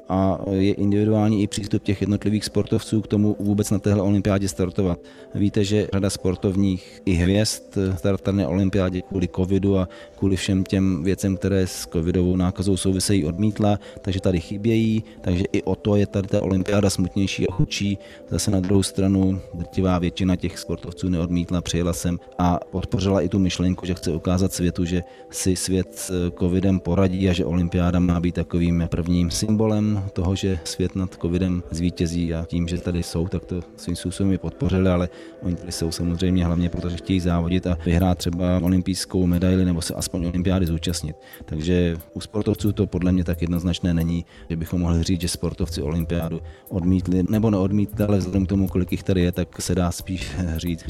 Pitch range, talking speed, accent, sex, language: 85-100 Hz, 180 wpm, native, male, Czech